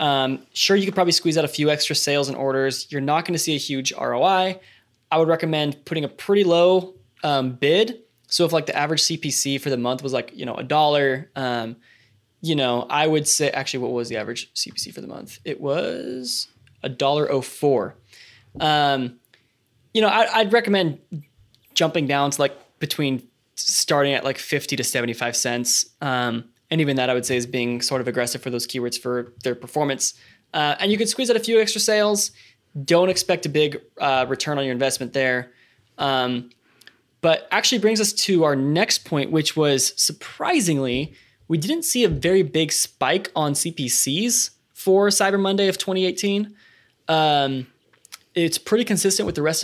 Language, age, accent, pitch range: English, 20-39, American, 130-175 Hz